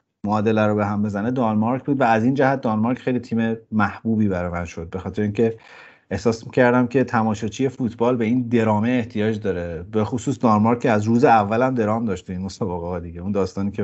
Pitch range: 100-120 Hz